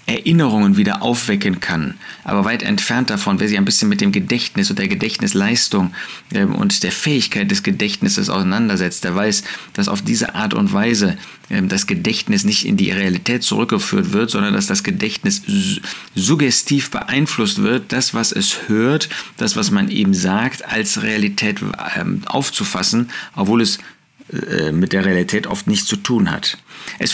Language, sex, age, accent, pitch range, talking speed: German, male, 40-59, German, 140-210 Hz, 155 wpm